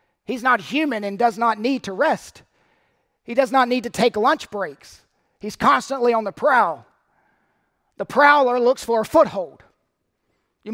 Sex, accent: male, American